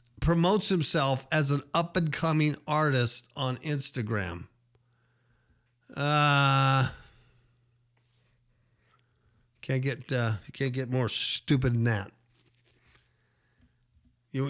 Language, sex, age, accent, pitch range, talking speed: English, male, 50-69, American, 120-150 Hz, 85 wpm